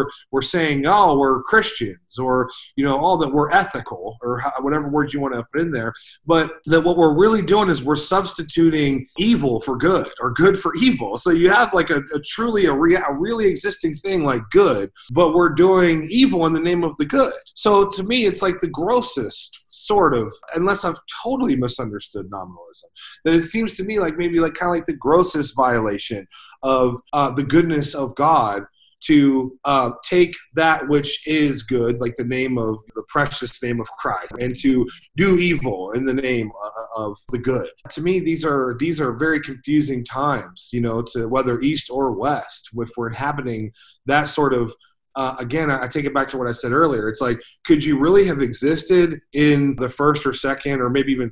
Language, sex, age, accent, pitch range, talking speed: English, male, 30-49, American, 130-175 Hz, 200 wpm